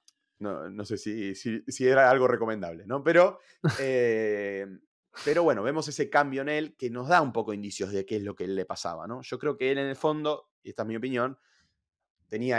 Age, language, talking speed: 20-39, Spanish, 220 wpm